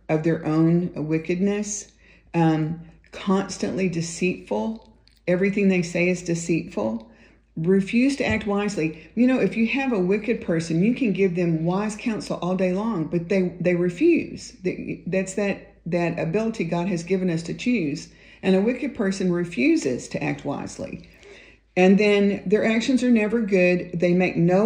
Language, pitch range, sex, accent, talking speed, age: English, 160-195 Hz, female, American, 155 wpm, 50-69